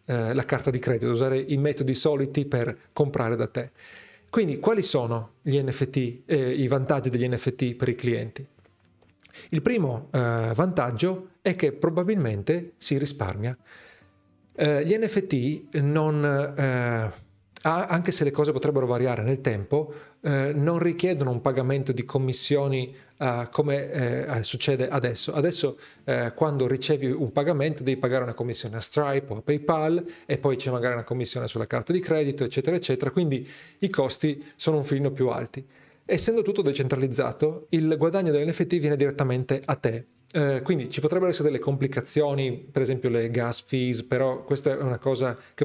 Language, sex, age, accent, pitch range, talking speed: Italian, male, 40-59, native, 125-155 Hz, 155 wpm